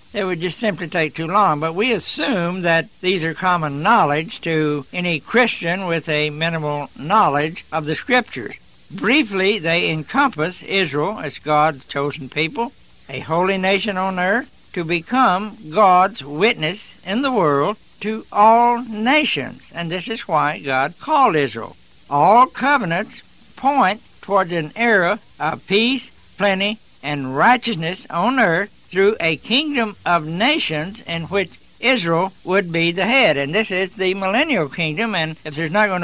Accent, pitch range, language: American, 155-215 Hz, English